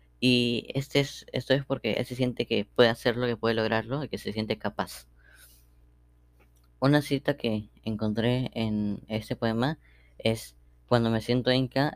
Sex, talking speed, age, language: female, 165 wpm, 20-39, Spanish